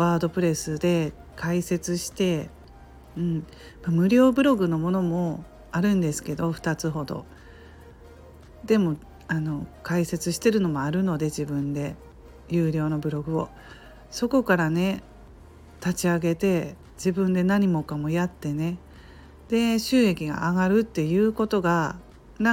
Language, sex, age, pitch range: Japanese, female, 40-59, 155-195 Hz